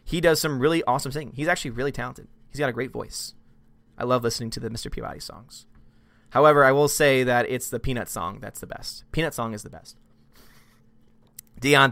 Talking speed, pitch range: 205 wpm, 140-225 Hz